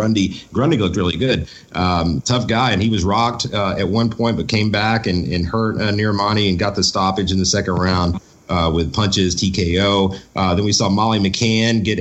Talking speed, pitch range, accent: 215 wpm, 95-120 Hz, American